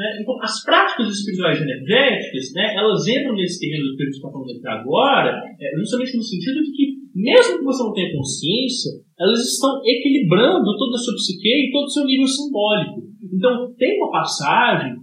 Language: English